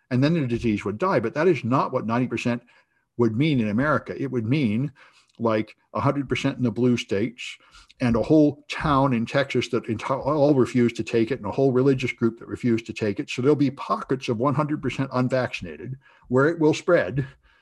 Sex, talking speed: male, 200 wpm